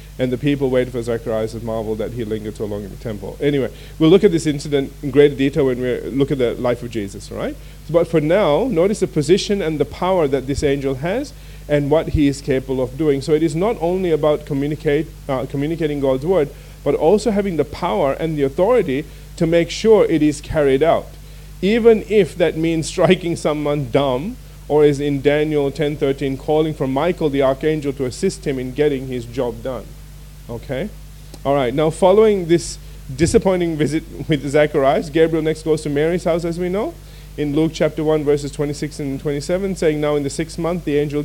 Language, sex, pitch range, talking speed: English, male, 135-160 Hz, 200 wpm